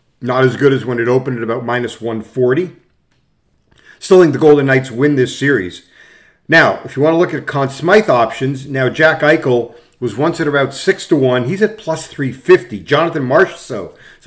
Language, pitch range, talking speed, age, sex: English, 130-160 Hz, 185 wpm, 50-69, male